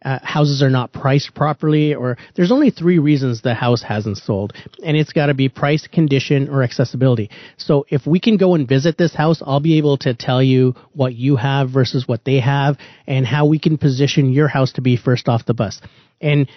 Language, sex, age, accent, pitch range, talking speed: English, male, 30-49, American, 130-155 Hz, 215 wpm